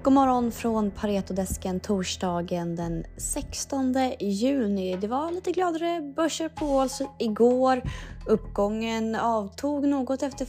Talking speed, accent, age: 110 wpm, native, 20-39